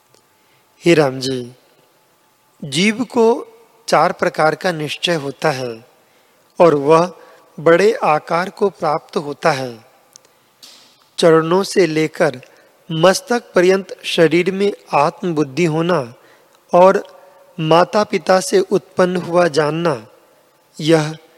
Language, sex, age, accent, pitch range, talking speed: Hindi, male, 40-59, native, 155-195 Hz, 100 wpm